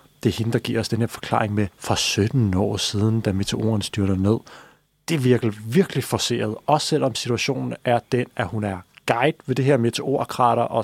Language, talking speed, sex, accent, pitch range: Danish, 205 wpm, male, native, 115-140 Hz